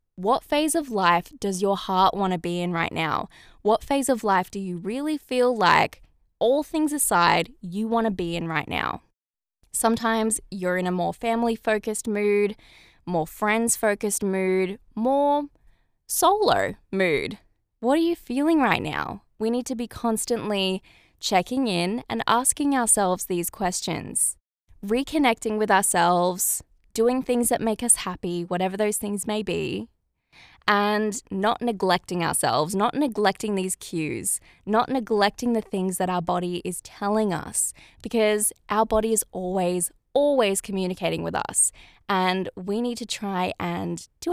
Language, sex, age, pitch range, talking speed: English, female, 10-29, 185-235 Hz, 150 wpm